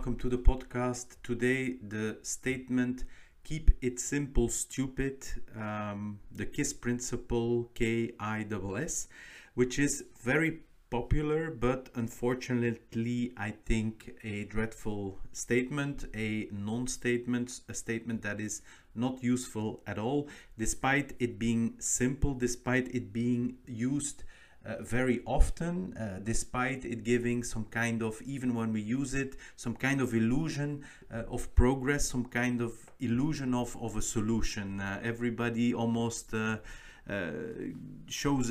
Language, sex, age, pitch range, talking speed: English, male, 40-59, 110-130 Hz, 130 wpm